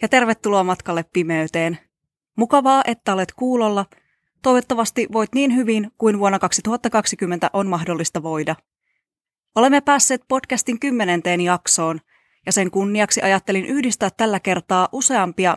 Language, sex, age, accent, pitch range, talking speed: Finnish, female, 20-39, native, 175-225 Hz, 120 wpm